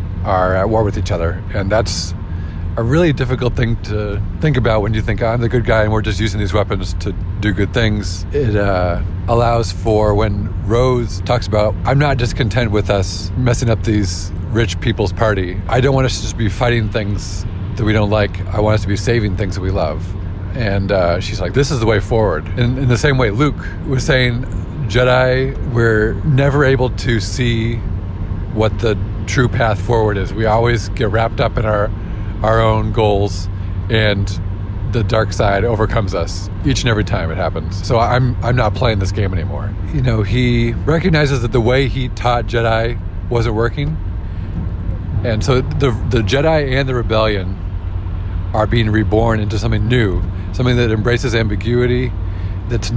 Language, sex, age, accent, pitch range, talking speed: English, male, 40-59, American, 95-120 Hz, 190 wpm